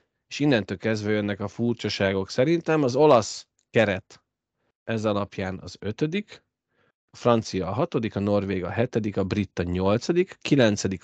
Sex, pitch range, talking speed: male, 100-120 Hz, 140 wpm